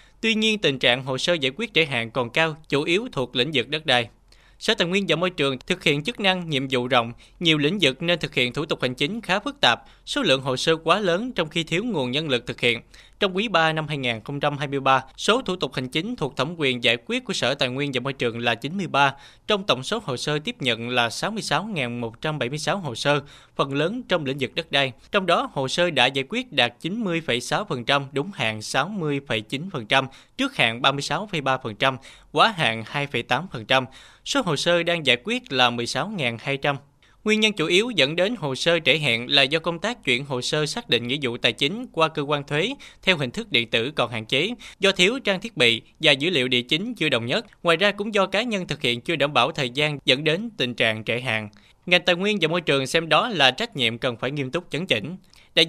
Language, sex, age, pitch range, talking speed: Vietnamese, male, 20-39, 125-180 Hz, 230 wpm